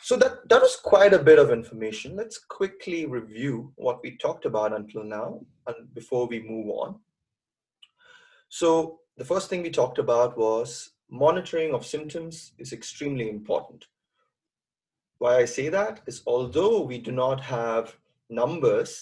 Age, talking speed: 30-49, 150 wpm